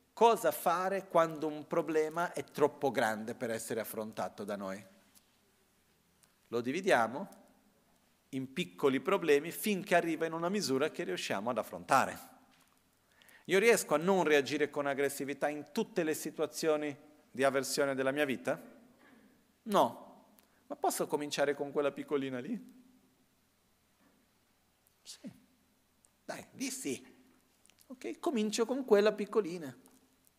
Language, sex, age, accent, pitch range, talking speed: Italian, male, 40-59, native, 130-185 Hz, 115 wpm